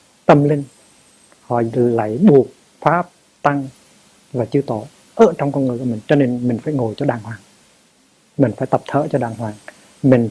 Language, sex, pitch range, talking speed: Vietnamese, male, 115-150 Hz, 185 wpm